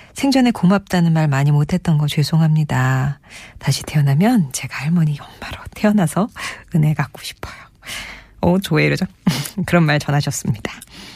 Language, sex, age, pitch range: Korean, female, 40-59, 150-195 Hz